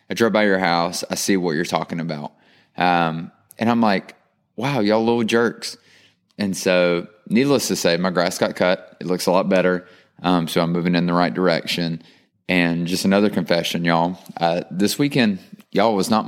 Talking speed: 190 wpm